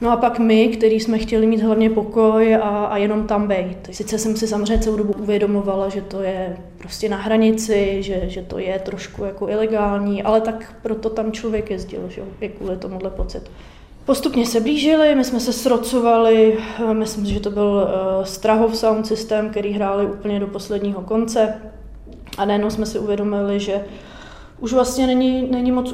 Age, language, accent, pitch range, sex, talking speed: 20-39, Czech, native, 200-225 Hz, female, 185 wpm